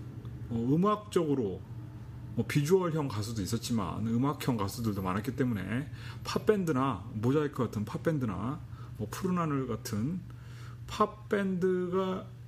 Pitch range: 115-135 Hz